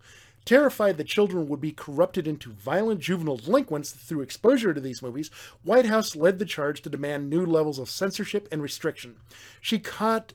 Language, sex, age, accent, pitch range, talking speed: English, male, 40-59, American, 130-195 Hz, 175 wpm